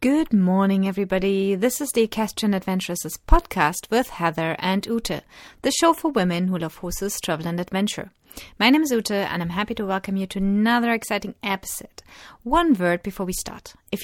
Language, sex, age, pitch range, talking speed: English, female, 30-49, 185-240 Hz, 185 wpm